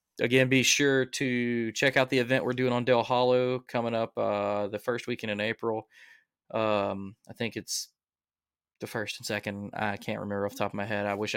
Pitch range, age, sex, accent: 105-120 Hz, 20-39, male, American